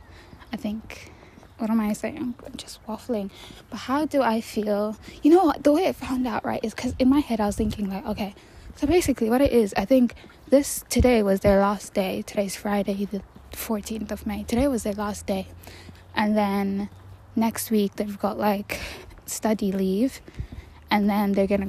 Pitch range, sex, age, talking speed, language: 195-225 Hz, female, 10-29, 195 wpm, English